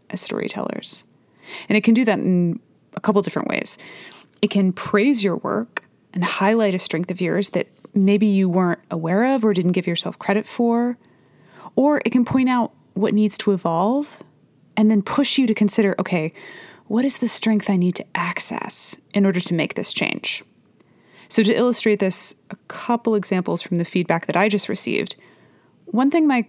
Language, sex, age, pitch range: English, female, 20-39, 185-230 Hz